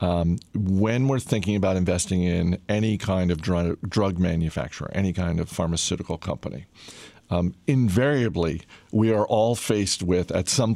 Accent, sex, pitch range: American, male, 95-120 Hz